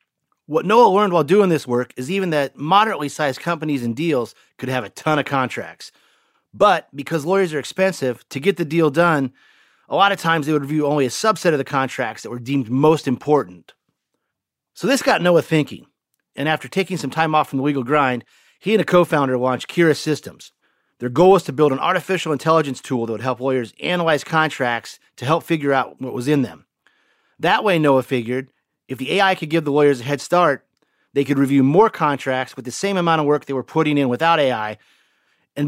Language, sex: English, male